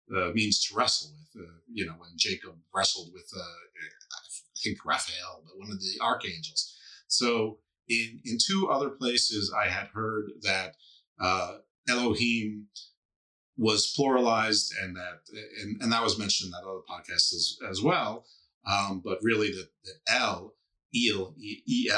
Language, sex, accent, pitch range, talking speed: English, male, American, 100-130 Hz, 155 wpm